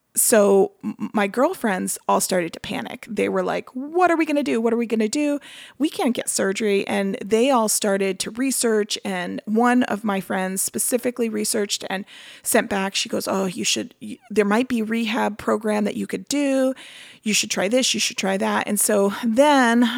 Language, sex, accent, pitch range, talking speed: English, female, American, 210-255 Hz, 200 wpm